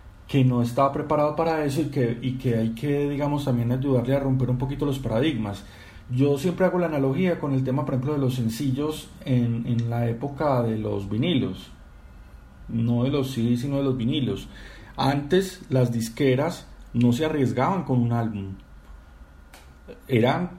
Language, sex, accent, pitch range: Spanish, male, Colombian, 115-155 Hz